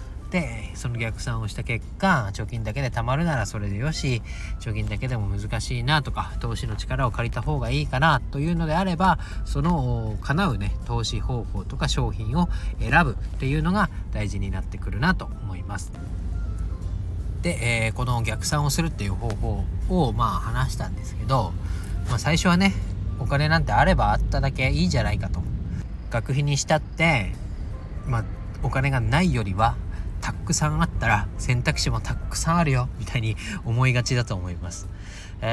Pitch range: 100-135 Hz